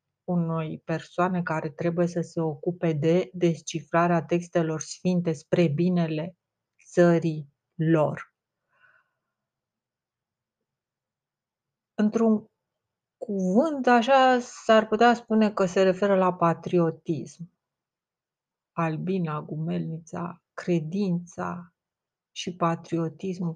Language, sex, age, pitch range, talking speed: Romanian, female, 30-49, 165-185 Hz, 80 wpm